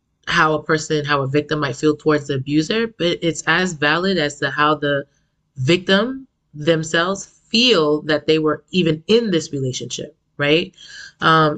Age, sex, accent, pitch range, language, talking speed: 20-39, female, American, 145-165 Hz, English, 160 wpm